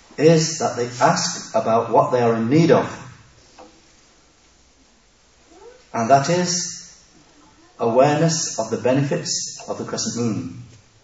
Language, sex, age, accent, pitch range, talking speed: English, male, 40-59, British, 120-160 Hz, 120 wpm